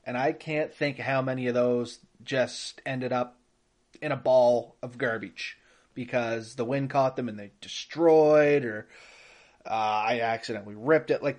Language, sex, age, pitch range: English, male, 30-49, 125-170 Hz